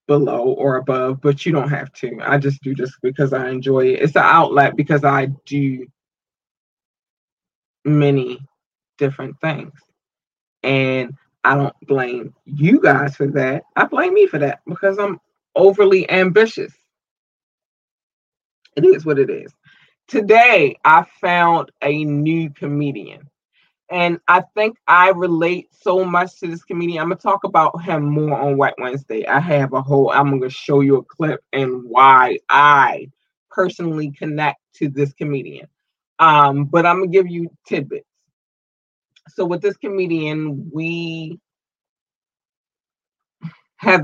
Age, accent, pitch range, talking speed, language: 20-39, American, 140-180 Hz, 145 wpm, English